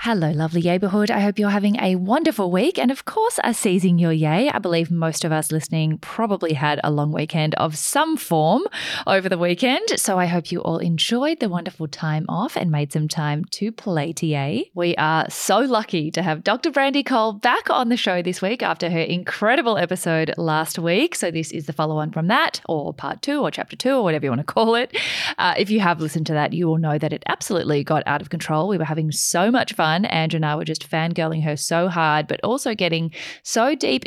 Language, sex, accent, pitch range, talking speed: English, female, Australian, 155-200 Hz, 230 wpm